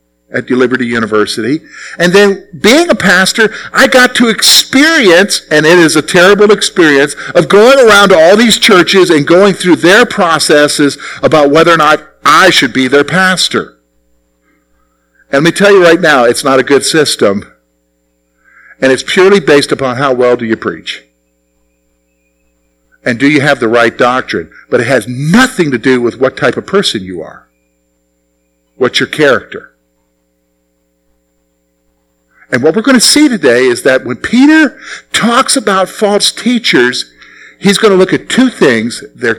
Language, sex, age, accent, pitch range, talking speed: English, male, 50-69, American, 115-185 Hz, 165 wpm